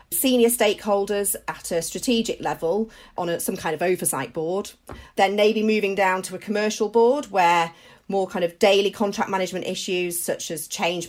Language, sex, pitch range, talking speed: English, female, 170-220 Hz, 175 wpm